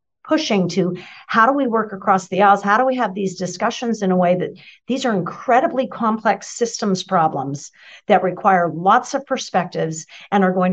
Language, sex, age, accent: English, female, 50-69, American